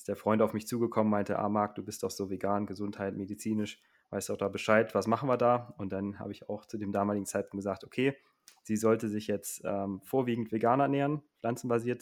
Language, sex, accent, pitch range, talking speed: German, male, German, 95-110 Hz, 215 wpm